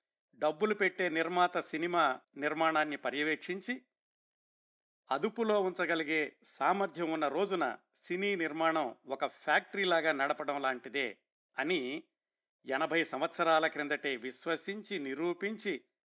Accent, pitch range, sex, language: native, 150-190 Hz, male, Telugu